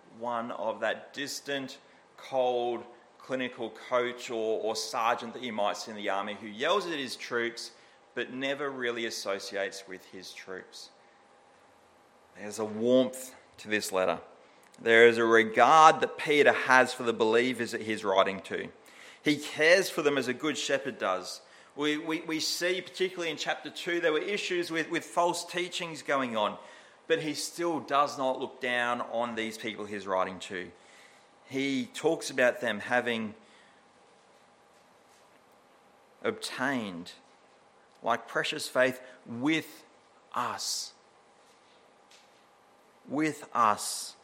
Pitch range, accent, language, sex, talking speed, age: 110-150 Hz, Australian, English, male, 135 wpm, 30-49